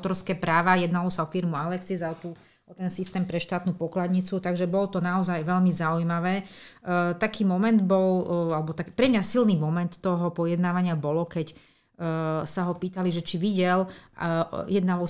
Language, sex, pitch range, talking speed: Slovak, female, 165-190 Hz, 180 wpm